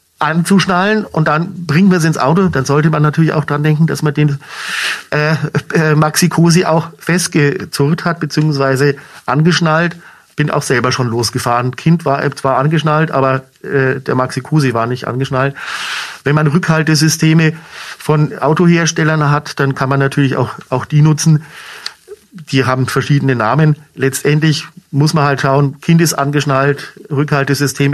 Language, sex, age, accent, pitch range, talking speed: German, male, 50-69, German, 135-165 Hz, 145 wpm